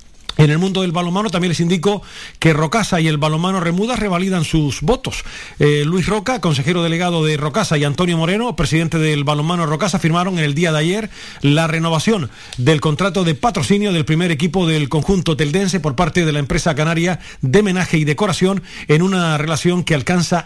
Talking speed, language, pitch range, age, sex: 190 wpm, Spanish, 155-185 Hz, 40-59, male